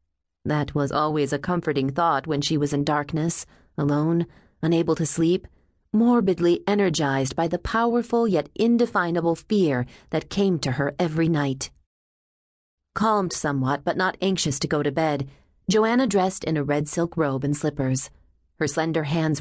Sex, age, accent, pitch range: female, 30-49, American, 145-195 Hz